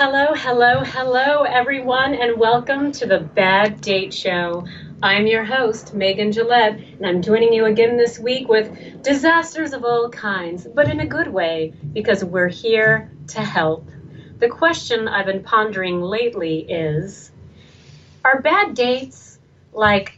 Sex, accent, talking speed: female, American, 145 wpm